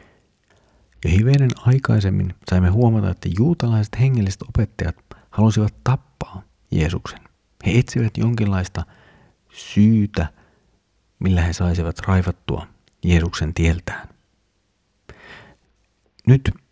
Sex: male